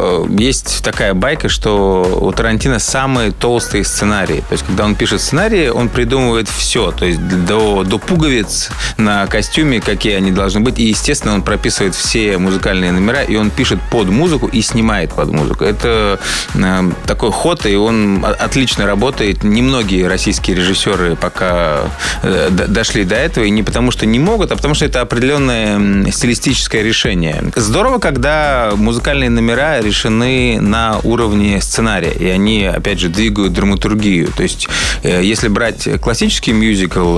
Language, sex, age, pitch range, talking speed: Russian, male, 20-39, 95-120 Hz, 145 wpm